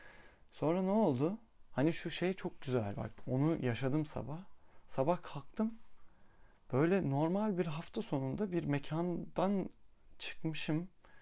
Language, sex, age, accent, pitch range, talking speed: Turkish, male, 30-49, native, 120-165 Hz, 120 wpm